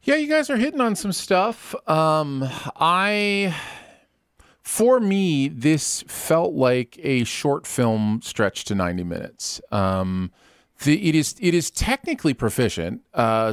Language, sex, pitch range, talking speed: English, male, 95-135 Hz, 135 wpm